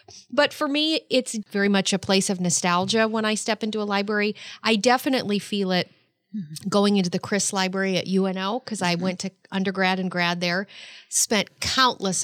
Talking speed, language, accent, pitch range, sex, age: 180 wpm, English, American, 175-215 Hz, female, 40-59